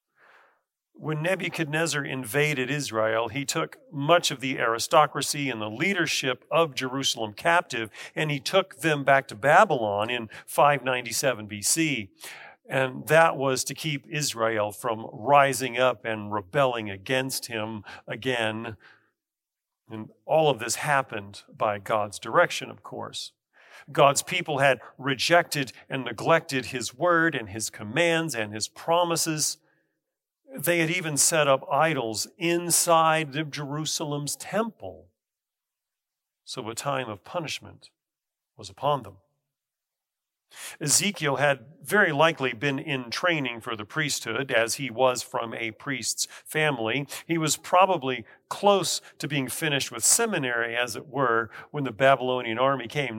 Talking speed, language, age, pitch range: 130 wpm, English, 40-59, 115-155 Hz